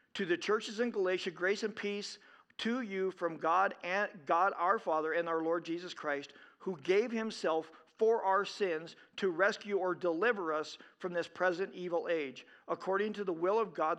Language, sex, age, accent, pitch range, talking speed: English, male, 50-69, American, 170-215 Hz, 185 wpm